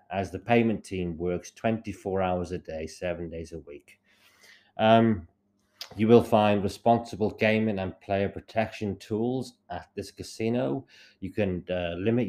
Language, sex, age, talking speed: English, male, 30-49, 145 wpm